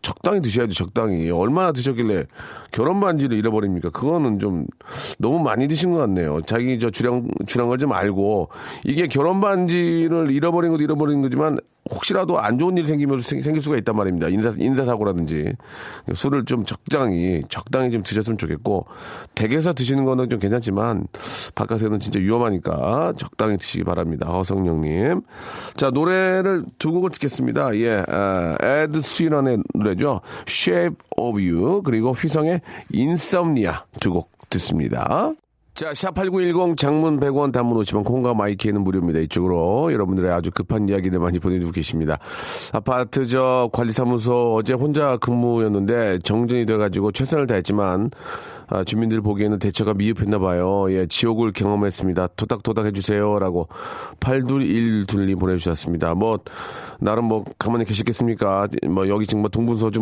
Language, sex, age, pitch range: Korean, male, 40-59, 100-135 Hz